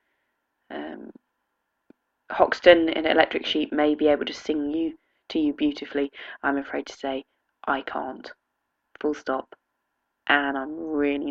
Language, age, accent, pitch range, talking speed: English, 20-39, British, 135-180 Hz, 135 wpm